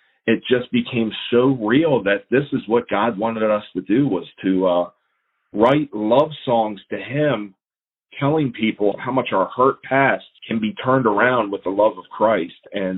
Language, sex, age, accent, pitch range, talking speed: English, male, 40-59, American, 95-115 Hz, 180 wpm